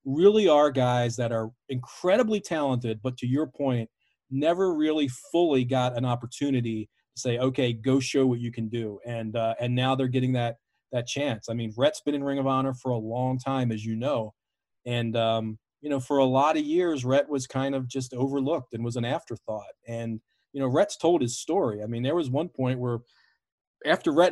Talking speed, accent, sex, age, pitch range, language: 210 wpm, American, male, 40-59, 120-145 Hz, English